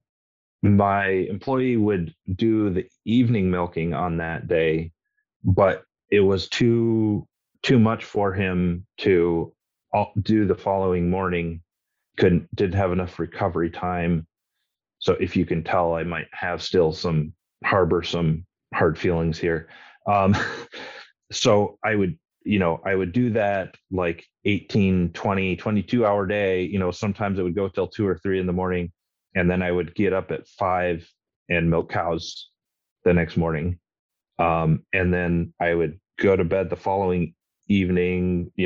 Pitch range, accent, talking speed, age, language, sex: 85-105 Hz, American, 155 wpm, 30-49, English, male